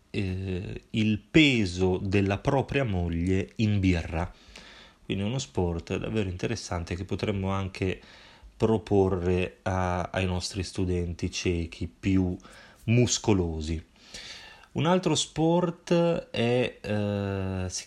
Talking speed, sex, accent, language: 100 wpm, male, native, Italian